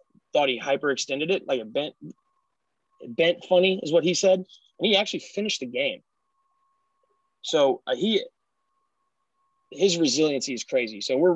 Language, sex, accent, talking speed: English, male, American, 145 wpm